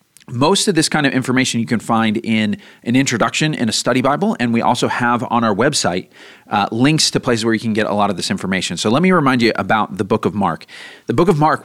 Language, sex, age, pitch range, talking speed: English, male, 40-59, 115-155 Hz, 260 wpm